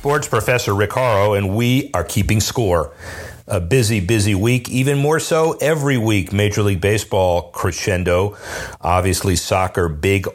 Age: 40-59